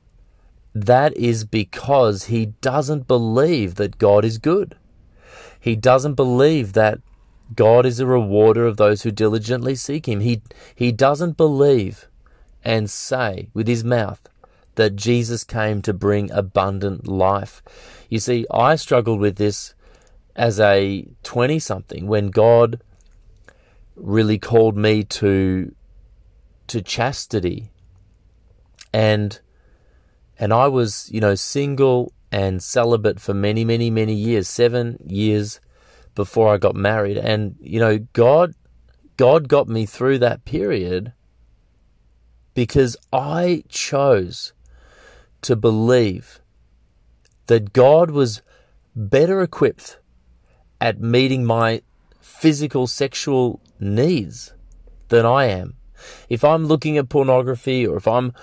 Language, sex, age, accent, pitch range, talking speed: English, male, 30-49, Australian, 100-125 Hz, 115 wpm